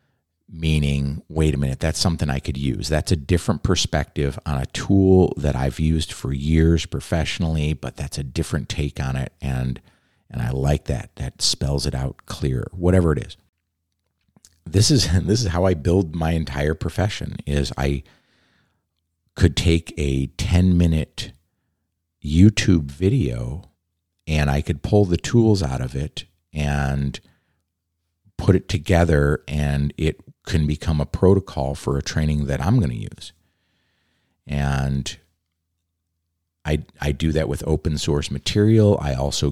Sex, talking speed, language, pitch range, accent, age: male, 150 wpm, English, 70-95 Hz, American, 50-69